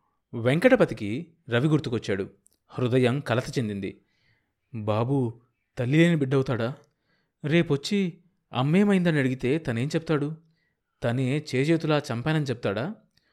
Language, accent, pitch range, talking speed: Telugu, native, 110-160 Hz, 80 wpm